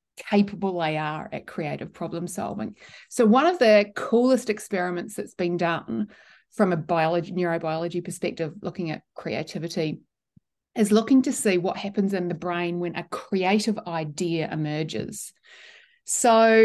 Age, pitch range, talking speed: 30-49, 170-210 Hz, 140 wpm